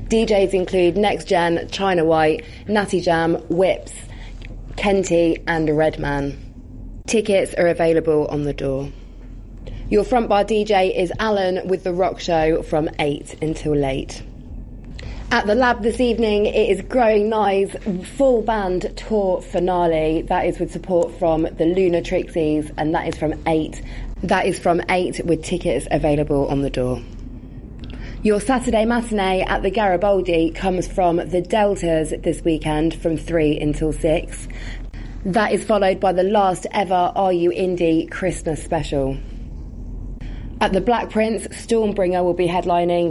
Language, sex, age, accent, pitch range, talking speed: English, female, 20-39, British, 155-190 Hz, 145 wpm